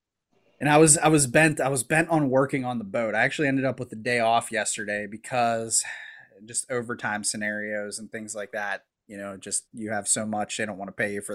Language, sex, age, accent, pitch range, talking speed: English, male, 20-39, American, 110-135 Hz, 240 wpm